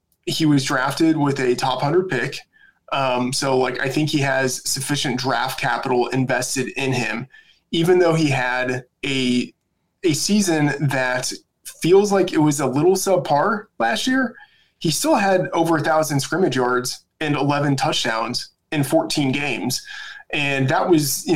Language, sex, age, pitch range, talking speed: English, male, 20-39, 135-170 Hz, 155 wpm